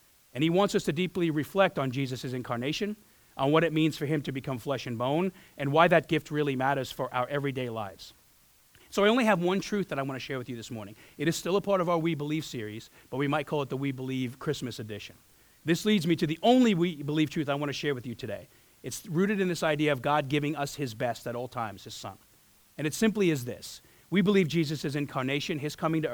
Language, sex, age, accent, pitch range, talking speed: English, male, 40-59, American, 130-170 Hz, 250 wpm